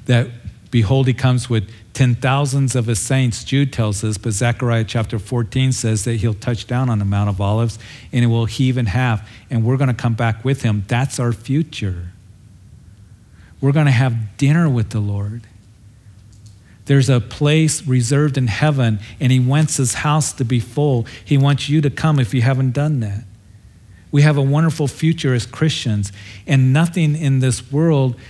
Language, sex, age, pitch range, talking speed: English, male, 50-69, 105-135 Hz, 185 wpm